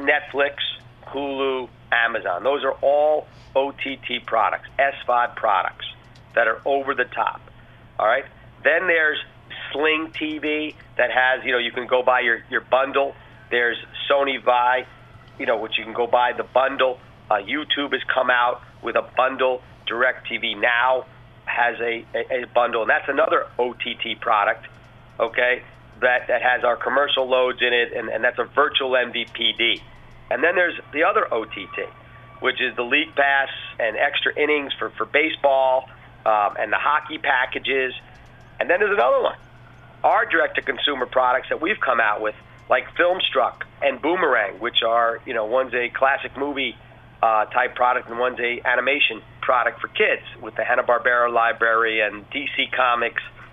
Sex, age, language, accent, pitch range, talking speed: male, 40-59, English, American, 115-135 Hz, 160 wpm